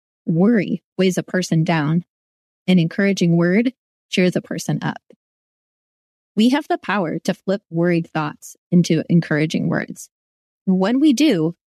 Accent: American